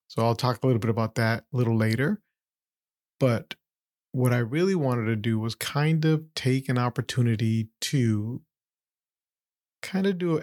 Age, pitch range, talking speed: 30-49, 115-135 Hz, 165 wpm